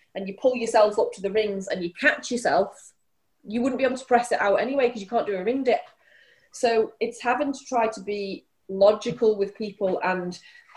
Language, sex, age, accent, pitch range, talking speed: English, female, 20-39, British, 185-235 Hz, 215 wpm